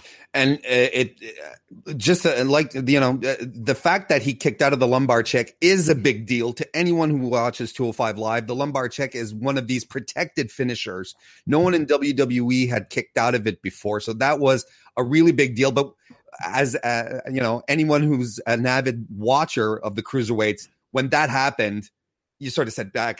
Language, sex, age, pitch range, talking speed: English, male, 30-49, 115-150 Hz, 200 wpm